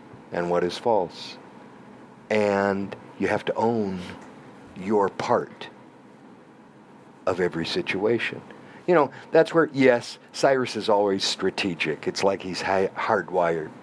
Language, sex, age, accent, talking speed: English, male, 50-69, American, 120 wpm